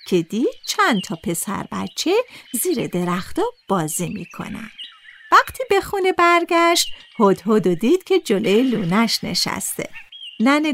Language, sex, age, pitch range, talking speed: Persian, female, 50-69, 195-315 Hz, 115 wpm